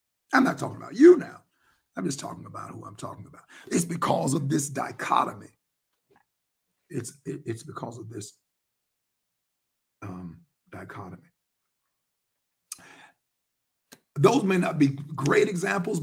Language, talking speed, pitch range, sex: English, 120 wpm, 135-170 Hz, male